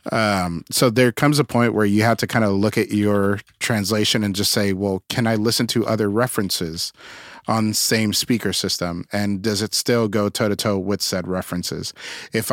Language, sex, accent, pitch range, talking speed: English, male, American, 95-115 Hz, 195 wpm